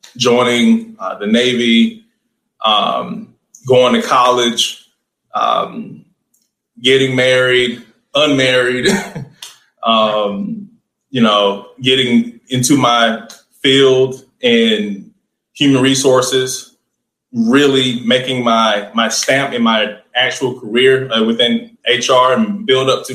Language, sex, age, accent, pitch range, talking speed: English, male, 20-39, American, 120-175 Hz, 100 wpm